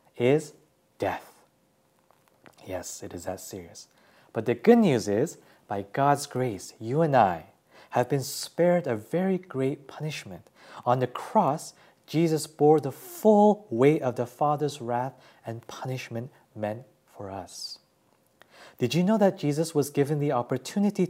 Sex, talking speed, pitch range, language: male, 145 wpm, 125-160 Hz, English